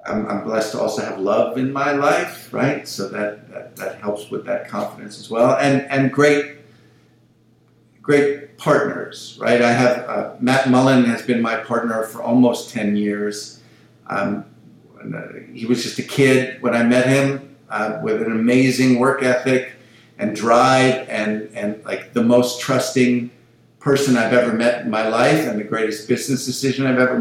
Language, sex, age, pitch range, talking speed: English, male, 50-69, 115-135 Hz, 170 wpm